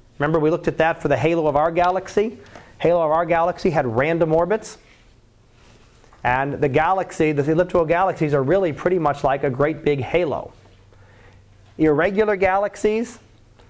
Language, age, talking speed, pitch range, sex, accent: English, 30-49, 155 wpm, 135-170 Hz, male, American